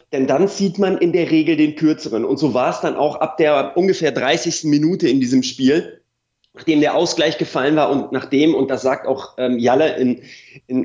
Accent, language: German, German